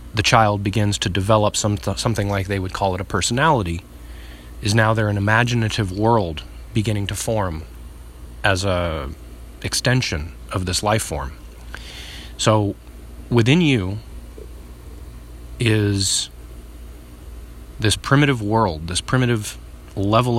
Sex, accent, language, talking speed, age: male, American, English, 115 wpm, 30-49